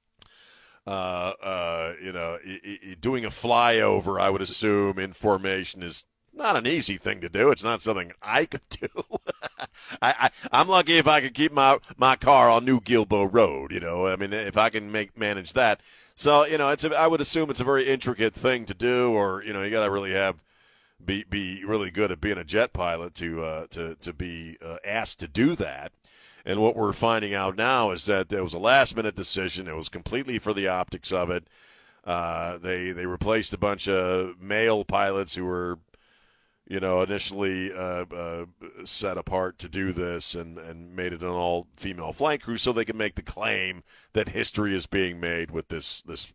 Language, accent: English, American